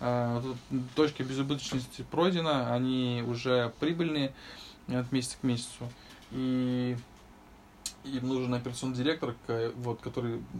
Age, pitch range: 20-39, 120-135 Hz